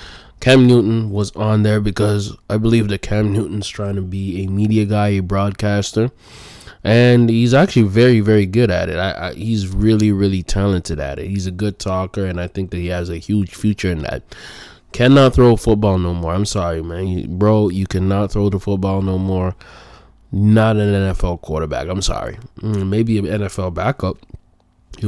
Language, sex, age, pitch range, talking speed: English, male, 20-39, 95-110 Hz, 180 wpm